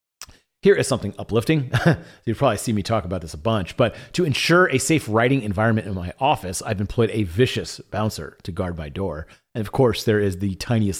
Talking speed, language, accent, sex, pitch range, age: 215 wpm, English, American, male, 105-140 Hz, 30-49